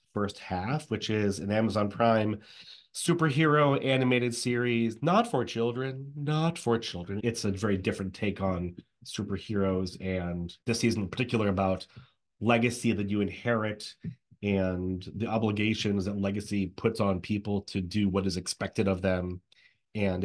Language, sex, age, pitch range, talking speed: English, male, 30-49, 95-120 Hz, 145 wpm